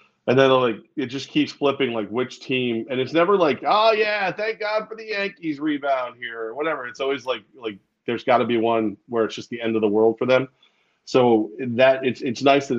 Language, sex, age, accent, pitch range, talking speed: English, male, 30-49, American, 110-130 Hz, 230 wpm